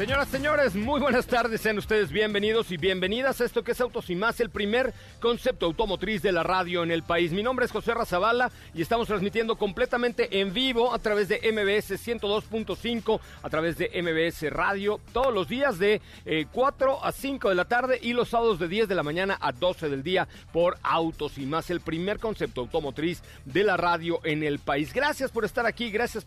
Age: 40-59